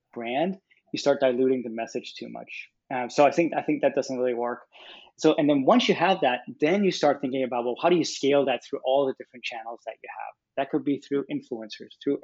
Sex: male